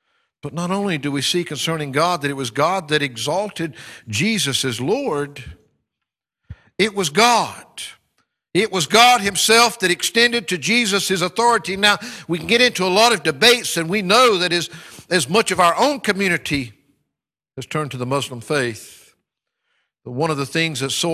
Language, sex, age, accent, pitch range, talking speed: English, male, 60-79, American, 145-205 Hz, 180 wpm